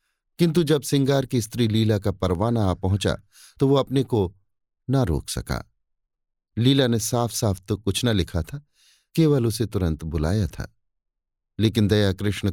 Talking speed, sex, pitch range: 160 wpm, male, 90-125 Hz